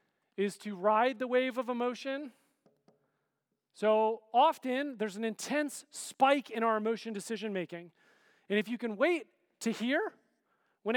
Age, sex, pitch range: 40-59, male, 210-260 Hz